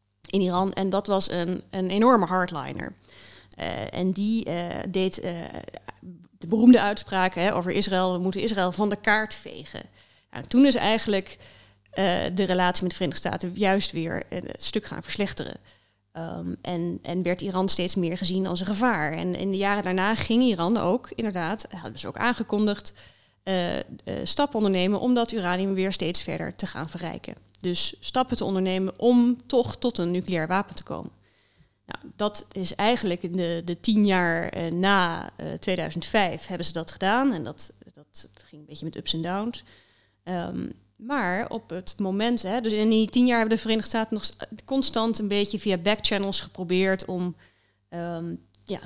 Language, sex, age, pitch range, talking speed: Dutch, female, 20-39, 175-210 Hz, 180 wpm